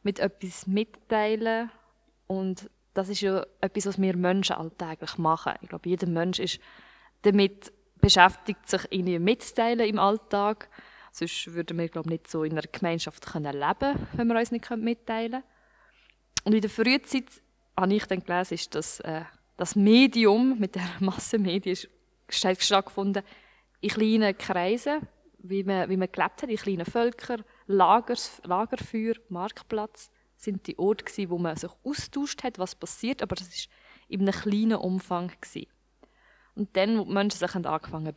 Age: 20-39